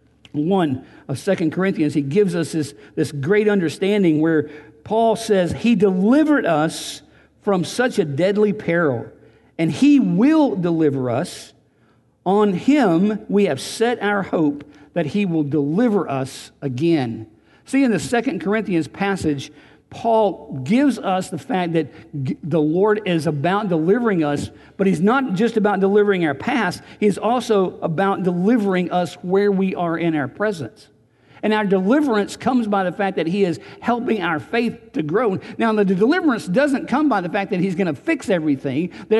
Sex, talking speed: male, 165 wpm